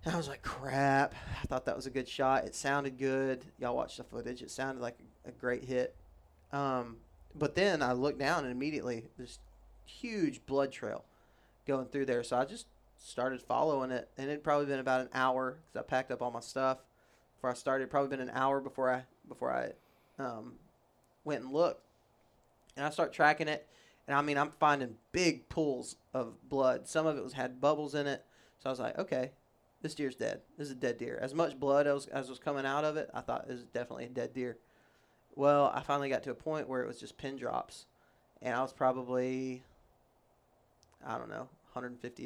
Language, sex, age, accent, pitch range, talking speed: English, male, 20-39, American, 125-150 Hz, 215 wpm